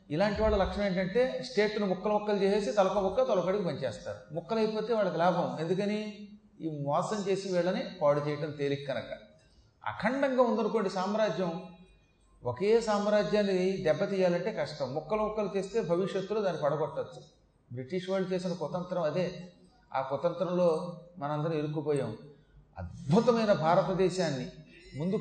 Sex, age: male, 30-49